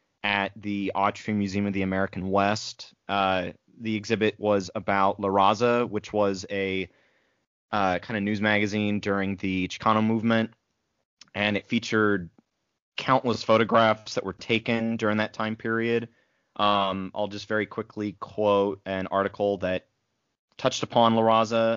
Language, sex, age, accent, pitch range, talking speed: English, male, 30-49, American, 100-115 Hz, 140 wpm